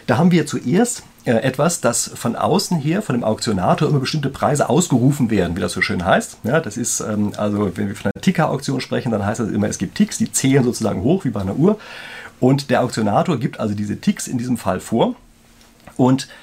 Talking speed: 215 wpm